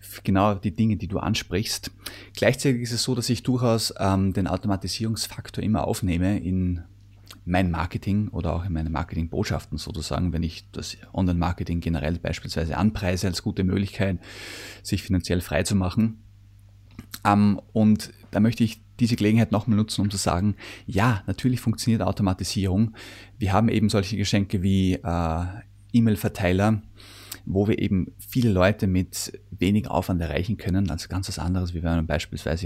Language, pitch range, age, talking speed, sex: German, 90-105 Hz, 30-49, 155 wpm, male